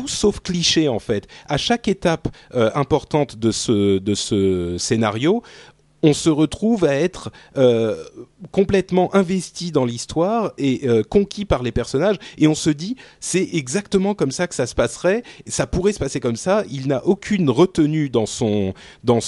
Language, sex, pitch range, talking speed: French, male, 110-170 Hz, 175 wpm